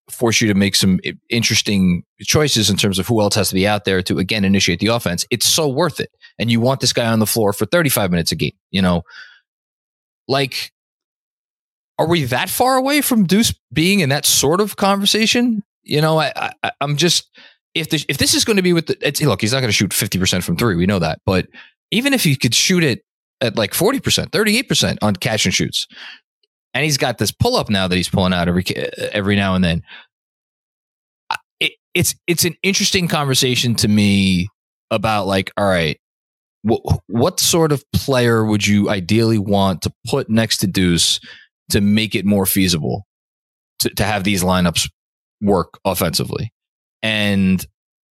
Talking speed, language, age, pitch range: 190 wpm, English, 20-39, 100-150 Hz